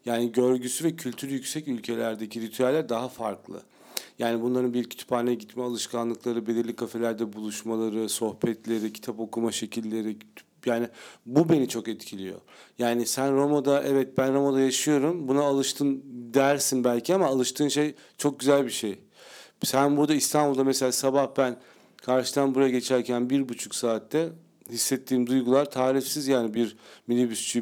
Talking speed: 135 wpm